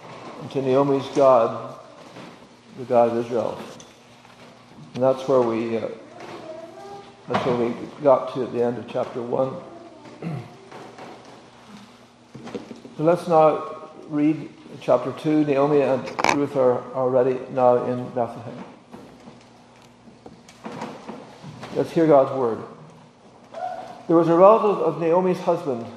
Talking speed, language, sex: 115 wpm, English, male